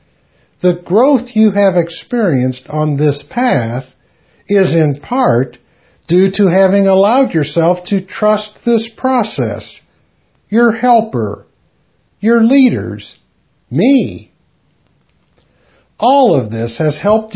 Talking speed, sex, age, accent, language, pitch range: 105 wpm, male, 60-79, American, English, 130-220 Hz